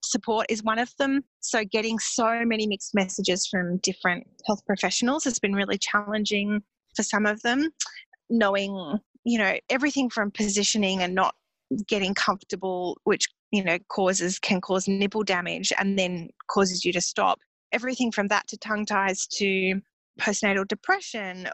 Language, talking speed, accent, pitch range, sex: English, 155 wpm, Australian, 190-230 Hz, female